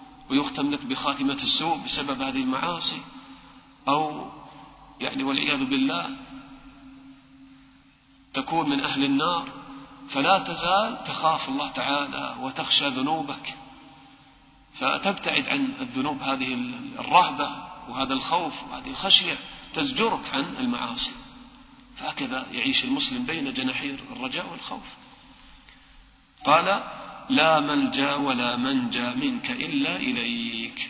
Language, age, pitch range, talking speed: English, 40-59, 235-275 Hz, 95 wpm